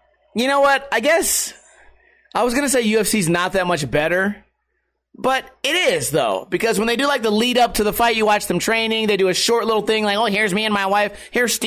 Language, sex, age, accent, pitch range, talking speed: English, male, 30-49, American, 180-235 Hz, 240 wpm